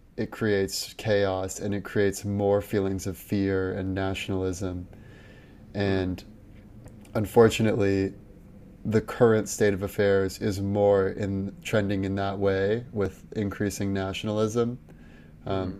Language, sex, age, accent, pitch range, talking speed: English, male, 20-39, American, 95-110 Hz, 115 wpm